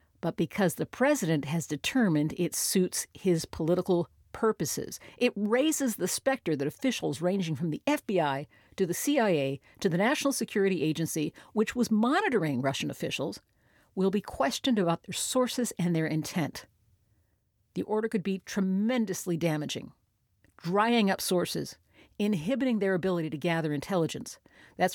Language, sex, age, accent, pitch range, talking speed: English, female, 50-69, American, 155-225 Hz, 140 wpm